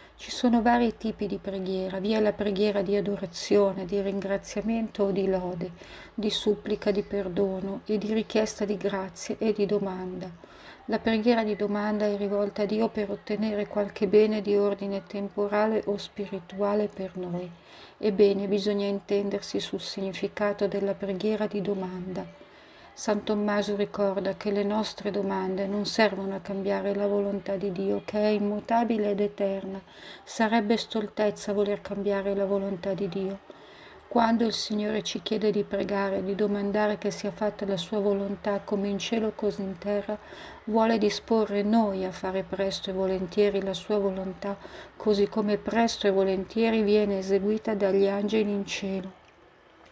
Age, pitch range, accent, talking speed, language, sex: 40-59, 195-210 Hz, native, 155 wpm, Italian, female